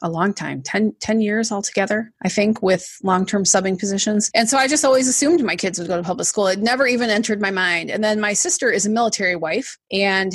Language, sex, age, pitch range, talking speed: English, female, 30-49, 190-235 Hz, 240 wpm